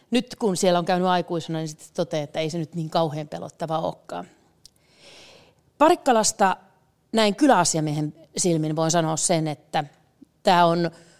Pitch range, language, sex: 160-200 Hz, Finnish, female